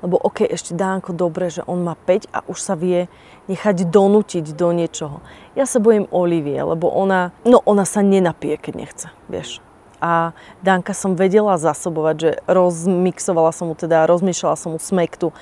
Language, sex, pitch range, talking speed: Slovak, female, 165-195 Hz, 170 wpm